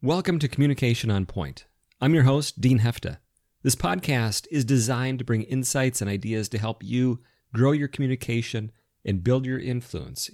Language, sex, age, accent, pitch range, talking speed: English, male, 30-49, American, 105-135 Hz, 170 wpm